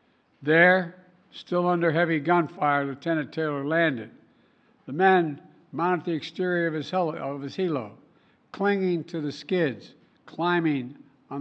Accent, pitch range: American, 140-175 Hz